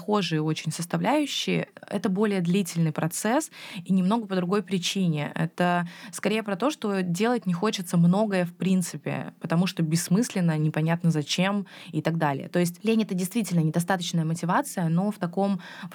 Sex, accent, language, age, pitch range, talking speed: female, native, Russian, 20-39, 165-200 Hz, 160 wpm